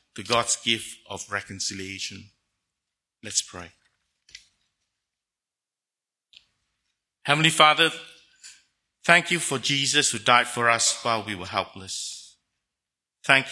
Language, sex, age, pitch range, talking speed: English, male, 50-69, 100-120 Hz, 100 wpm